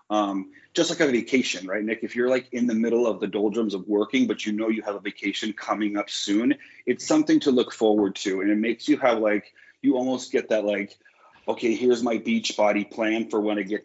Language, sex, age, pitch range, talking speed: English, male, 30-49, 105-130 Hz, 240 wpm